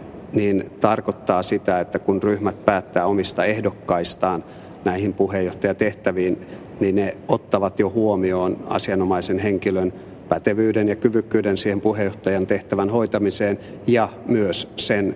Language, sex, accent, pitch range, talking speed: Finnish, male, native, 95-110 Hz, 110 wpm